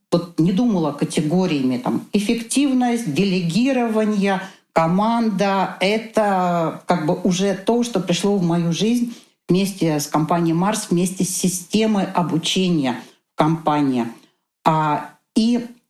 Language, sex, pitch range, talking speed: Russian, female, 155-200 Hz, 105 wpm